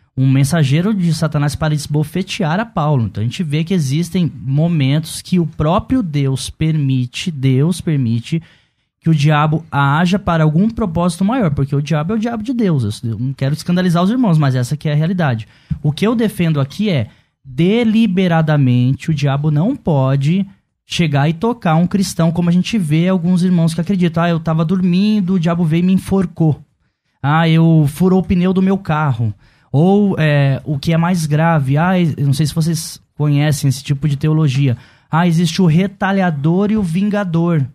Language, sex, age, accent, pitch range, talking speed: Portuguese, male, 10-29, Brazilian, 150-185 Hz, 185 wpm